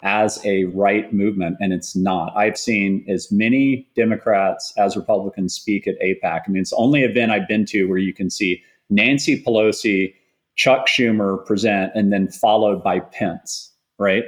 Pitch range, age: 100-120 Hz, 30-49